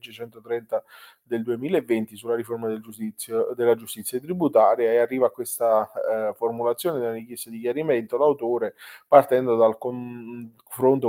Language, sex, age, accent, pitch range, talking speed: Italian, male, 20-39, native, 110-135 Hz, 125 wpm